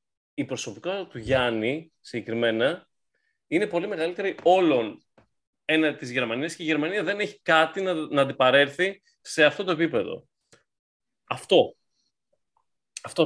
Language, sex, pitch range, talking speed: English, male, 115-180 Hz, 120 wpm